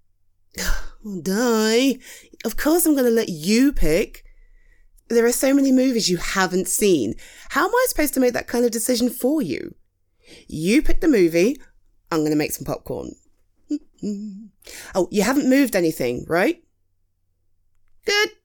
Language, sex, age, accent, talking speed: English, female, 30-49, British, 145 wpm